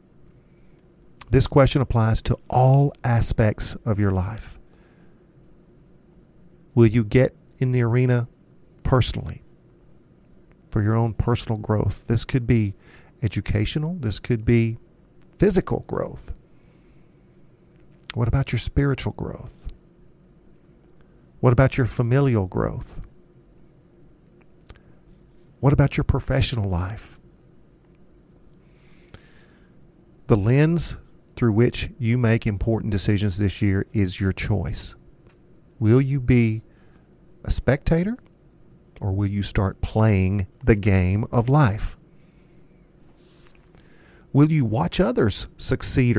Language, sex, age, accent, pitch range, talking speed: English, male, 50-69, American, 105-140 Hz, 100 wpm